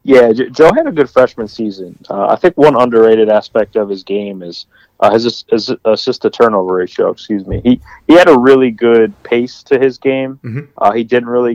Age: 30-49